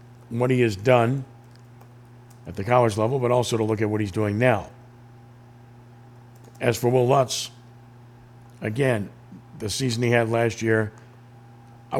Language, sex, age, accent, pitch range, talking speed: English, male, 50-69, American, 110-120 Hz, 145 wpm